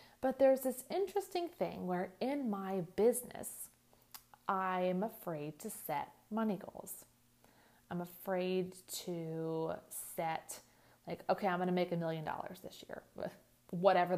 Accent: American